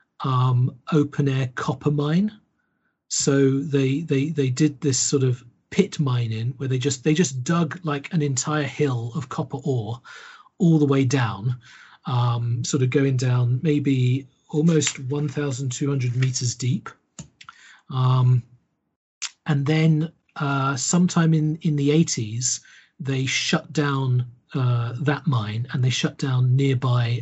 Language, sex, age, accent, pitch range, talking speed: English, male, 40-59, British, 120-145 Hz, 135 wpm